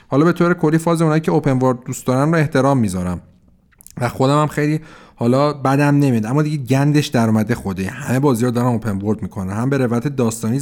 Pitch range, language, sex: 110-145 Hz, Persian, male